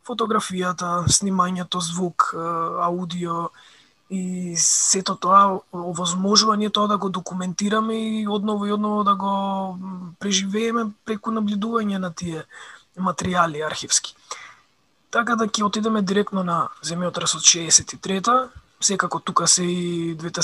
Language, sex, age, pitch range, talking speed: English, male, 20-39, 170-205 Hz, 110 wpm